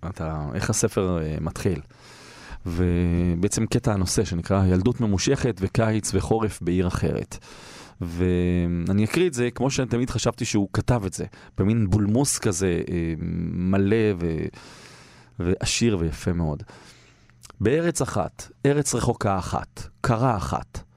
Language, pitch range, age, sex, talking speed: Hebrew, 100-125 Hz, 30-49, male, 115 wpm